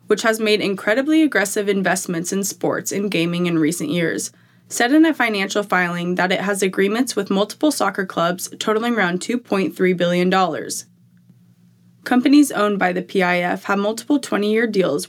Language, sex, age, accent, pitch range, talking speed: English, female, 20-39, American, 175-210 Hz, 155 wpm